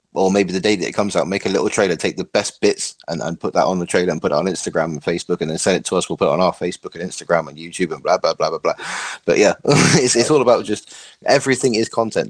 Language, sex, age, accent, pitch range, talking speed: English, male, 20-39, British, 90-115 Hz, 305 wpm